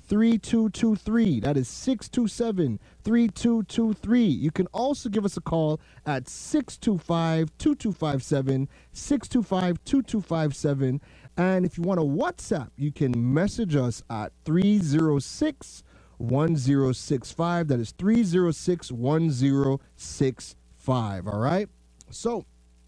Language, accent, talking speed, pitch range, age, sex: English, American, 95 wpm, 125-185 Hz, 30-49, male